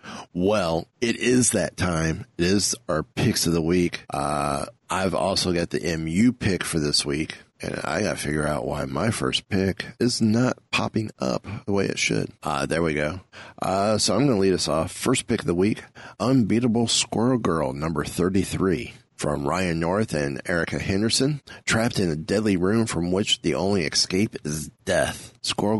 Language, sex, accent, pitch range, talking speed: English, male, American, 85-110 Hz, 190 wpm